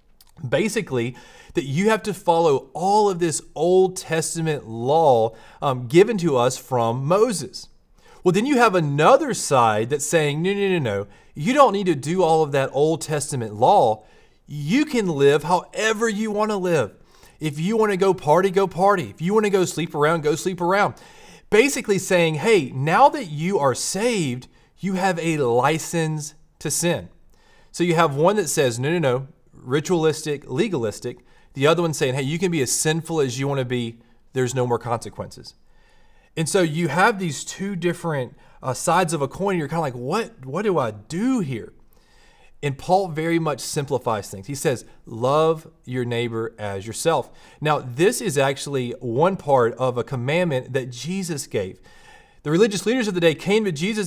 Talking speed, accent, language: 185 wpm, American, English